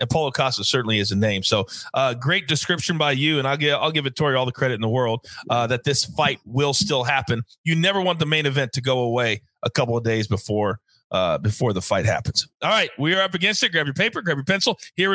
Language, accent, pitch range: English, American, 135-190 Hz